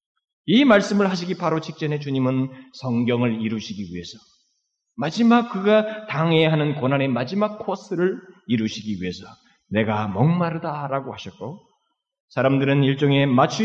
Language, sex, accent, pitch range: Korean, male, native, 110-180 Hz